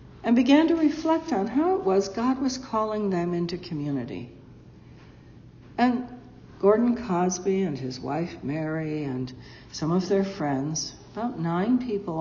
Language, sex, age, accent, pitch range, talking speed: English, female, 60-79, American, 175-250 Hz, 145 wpm